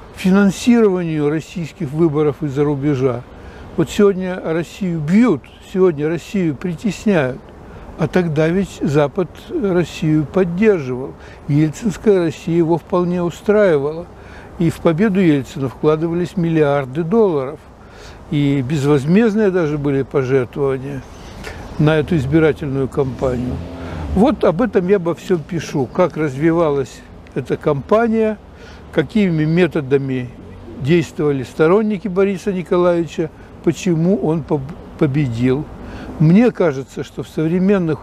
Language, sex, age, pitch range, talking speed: Russian, male, 60-79, 140-185 Hz, 100 wpm